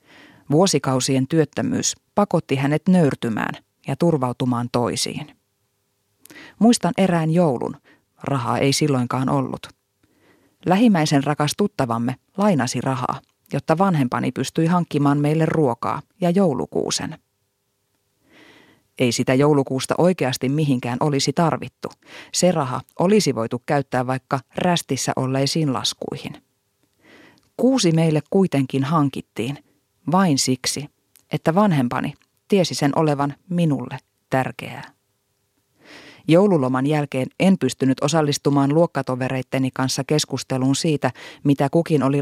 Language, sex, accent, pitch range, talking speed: Finnish, female, native, 130-165 Hz, 95 wpm